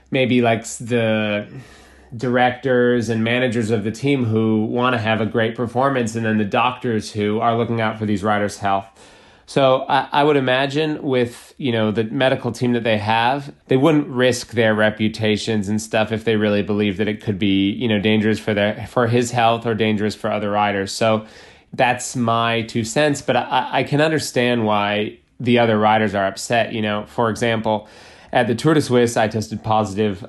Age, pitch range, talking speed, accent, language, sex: 30-49, 105-125 Hz, 190 wpm, American, English, male